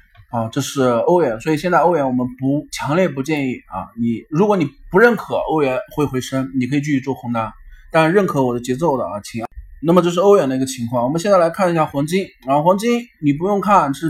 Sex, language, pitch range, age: male, Chinese, 125-170 Hz, 20-39